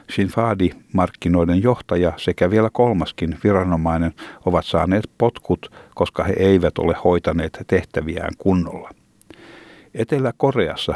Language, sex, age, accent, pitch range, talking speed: Finnish, male, 60-79, native, 85-105 Hz, 100 wpm